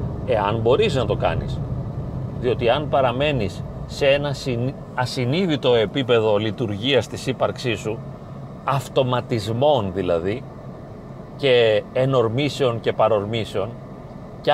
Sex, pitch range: male, 120-150 Hz